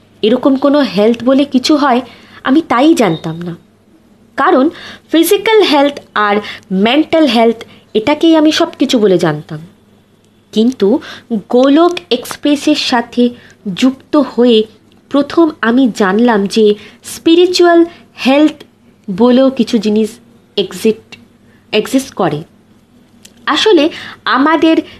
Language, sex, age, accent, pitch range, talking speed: Bengali, female, 20-39, native, 210-290 Hz, 100 wpm